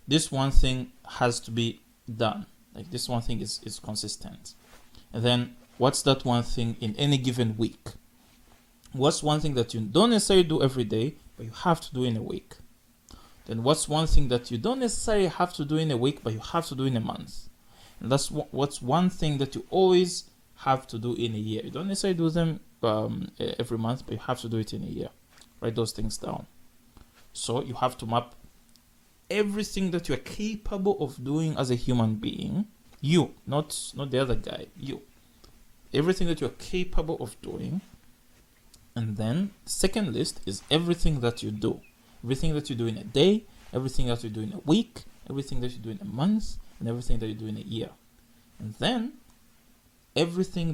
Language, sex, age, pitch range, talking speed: English, male, 20-39, 115-160 Hz, 200 wpm